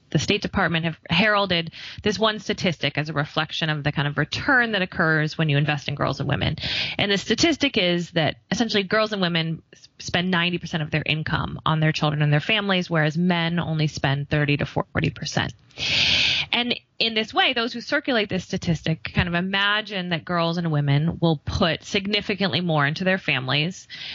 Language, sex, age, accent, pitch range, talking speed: English, female, 20-39, American, 155-200 Hz, 185 wpm